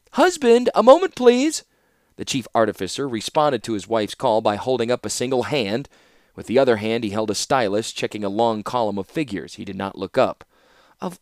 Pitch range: 105-165 Hz